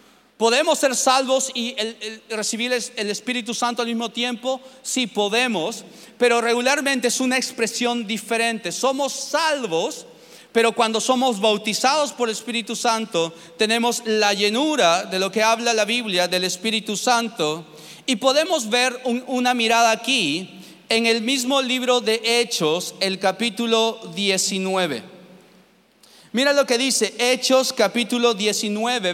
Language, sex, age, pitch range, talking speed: Spanish, male, 40-59, 210-250 Hz, 130 wpm